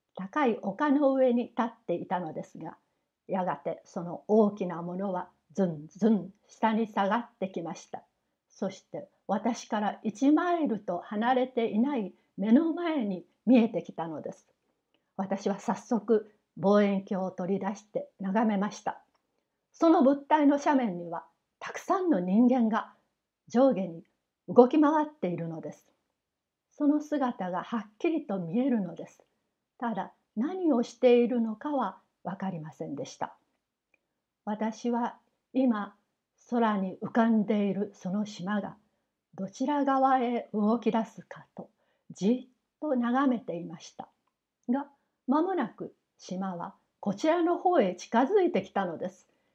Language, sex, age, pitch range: Japanese, female, 60-79, 195-265 Hz